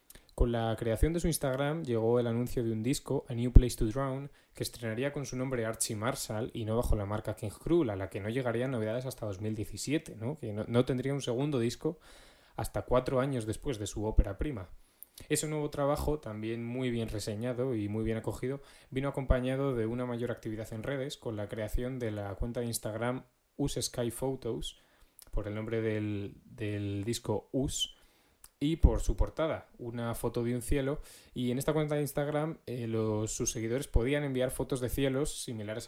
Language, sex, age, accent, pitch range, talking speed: Spanish, male, 20-39, Spanish, 110-130 Hz, 195 wpm